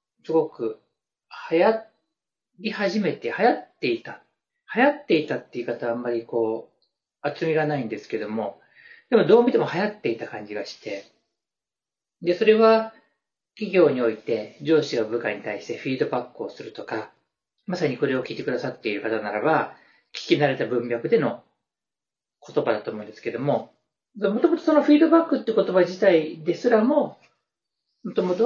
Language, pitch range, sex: Japanese, 140-220 Hz, male